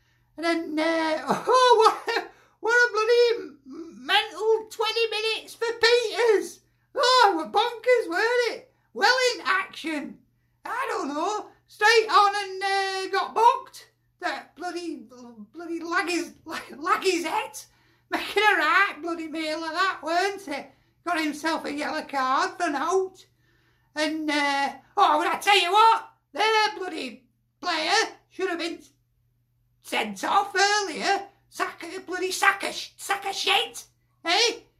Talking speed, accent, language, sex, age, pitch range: 140 wpm, British, English, male, 50-69, 335-430 Hz